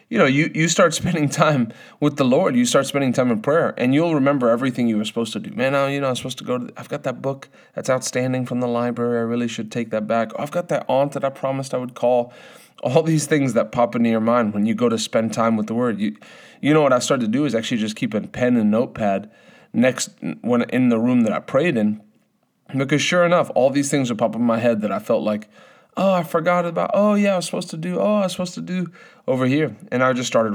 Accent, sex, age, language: American, male, 30-49, English